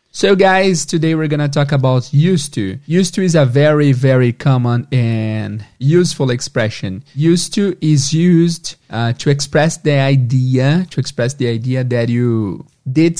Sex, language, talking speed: male, English, 160 wpm